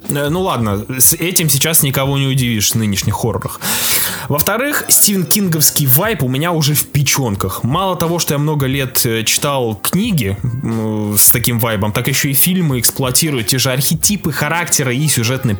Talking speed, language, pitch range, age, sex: 160 wpm, English, 120-160 Hz, 20-39, male